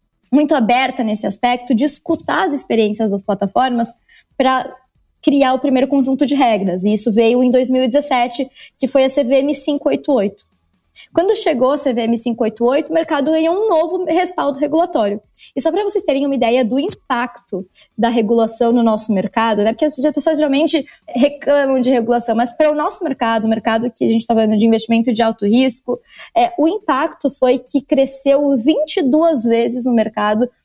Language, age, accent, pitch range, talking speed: Portuguese, 20-39, Brazilian, 230-295 Hz, 170 wpm